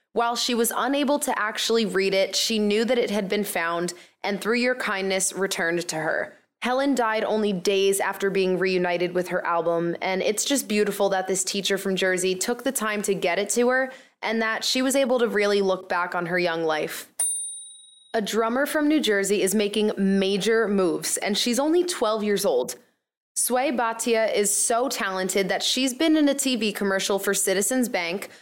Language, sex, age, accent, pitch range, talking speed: English, female, 20-39, American, 195-250 Hz, 195 wpm